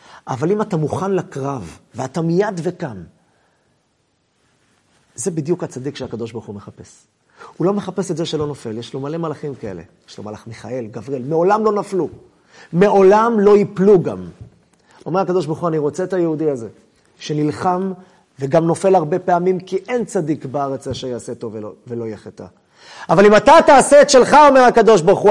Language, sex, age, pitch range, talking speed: Hebrew, male, 30-49, 145-205 Hz, 170 wpm